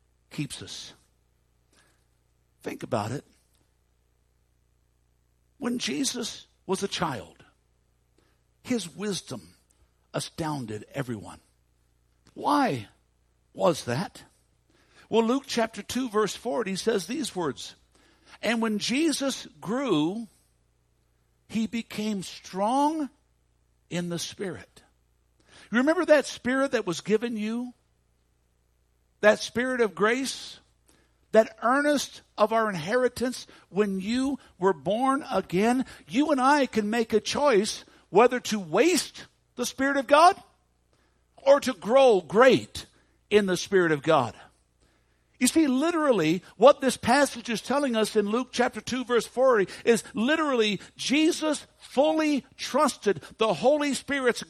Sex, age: male, 60-79